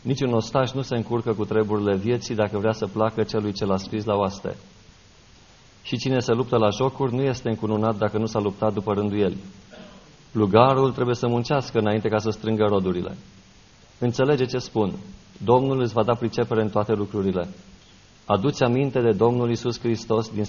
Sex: male